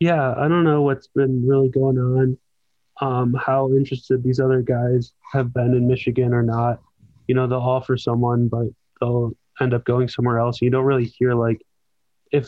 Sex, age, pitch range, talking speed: male, 20-39, 120-130 Hz, 190 wpm